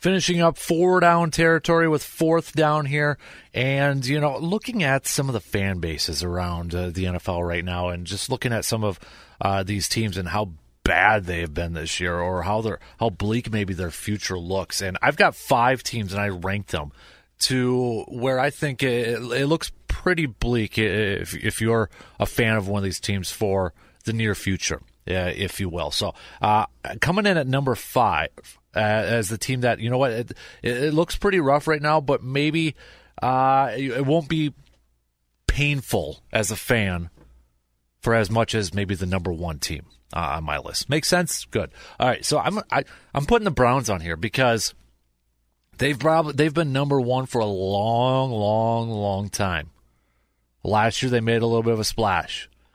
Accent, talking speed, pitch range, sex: American, 190 wpm, 90-135 Hz, male